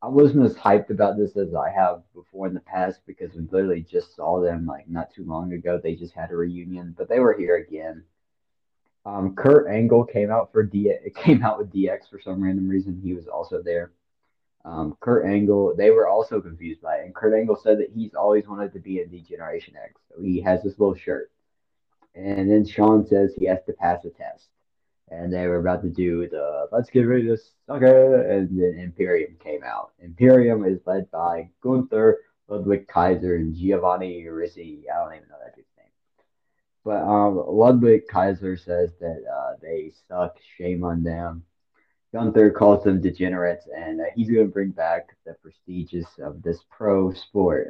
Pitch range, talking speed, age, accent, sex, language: 85-110 Hz, 195 wpm, 30-49, American, male, English